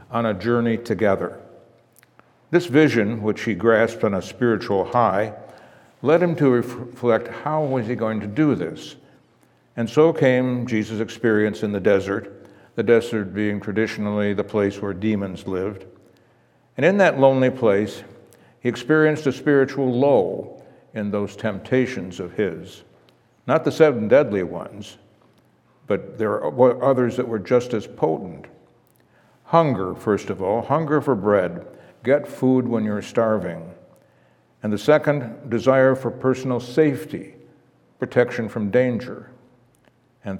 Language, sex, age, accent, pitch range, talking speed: English, male, 60-79, American, 105-130 Hz, 140 wpm